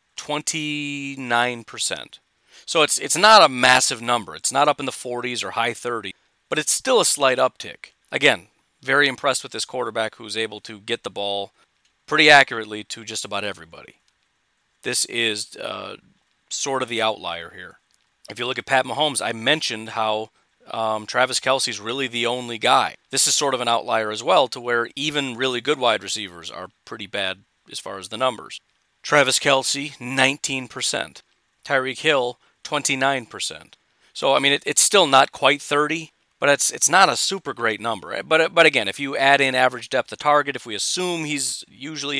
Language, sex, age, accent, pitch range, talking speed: English, male, 40-59, American, 110-140 Hz, 185 wpm